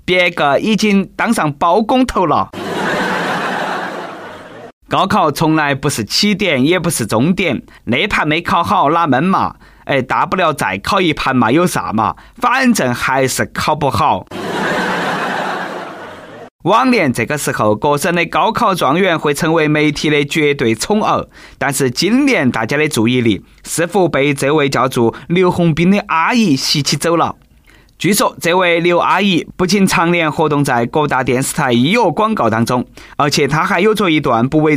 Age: 20-39